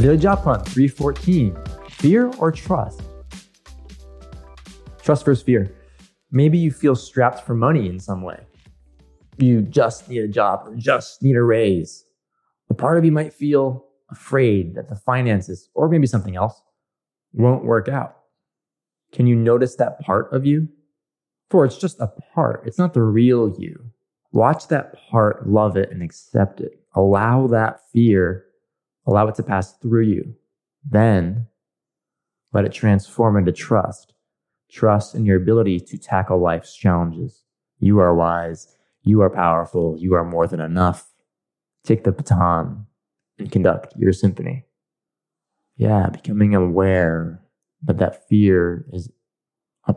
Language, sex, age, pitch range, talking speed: English, male, 20-39, 90-125 Hz, 145 wpm